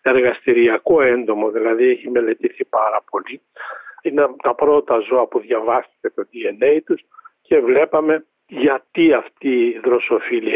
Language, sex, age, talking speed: Greek, male, 60-79, 125 wpm